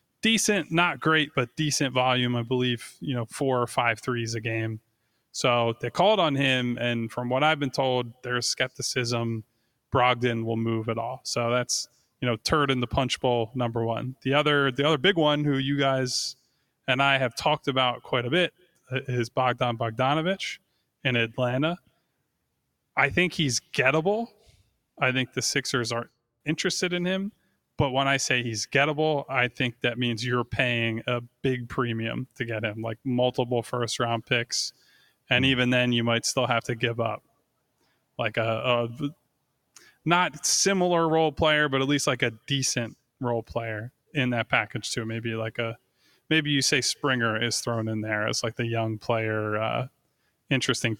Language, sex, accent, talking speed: English, male, American, 170 wpm